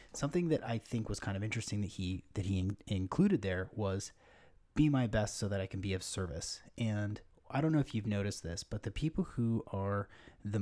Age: 30-49